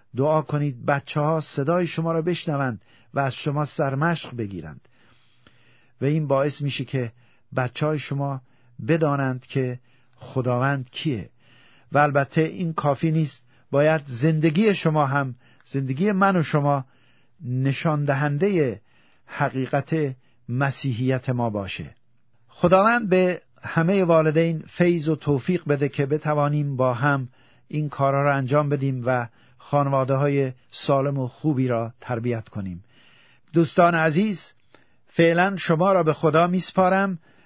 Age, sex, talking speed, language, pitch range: 50-69, male, 125 wpm, Persian, 130-160 Hz